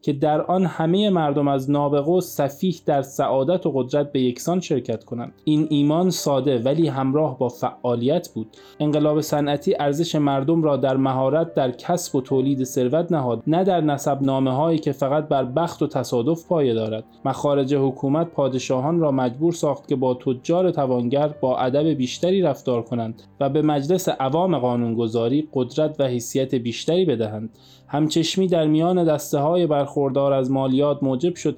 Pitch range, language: 125-155 Hz, Persian